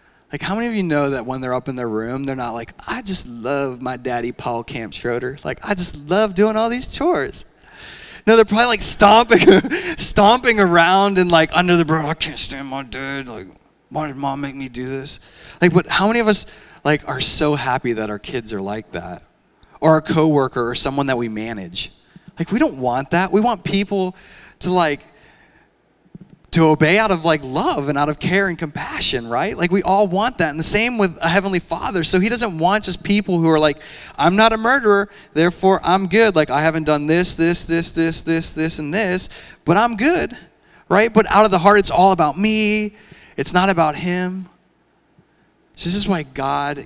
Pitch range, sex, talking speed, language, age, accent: 135-190 Hz, male, 215 wpm, English, 20-39, American